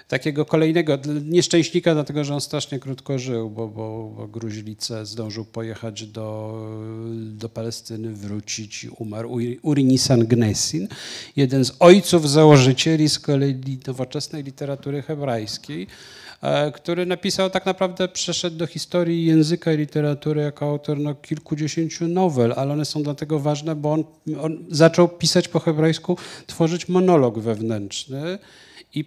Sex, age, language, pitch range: male, 40-59, Polish, 125-160 Hz